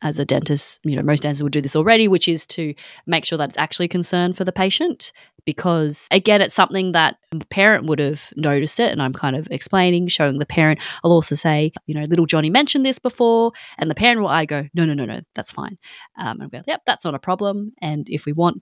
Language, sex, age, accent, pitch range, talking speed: English, female, 20-39, Australian, 150-190 Hz, 250 wpm